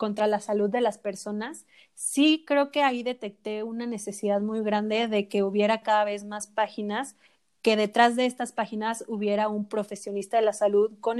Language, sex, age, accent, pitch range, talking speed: Spanish, female, 30-49, Mexican, 210-245 Hz, 180 wpm